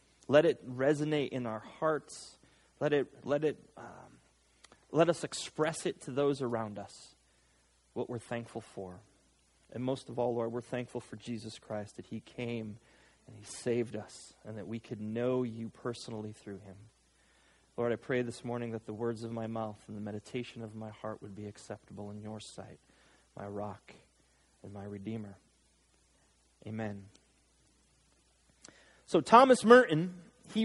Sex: male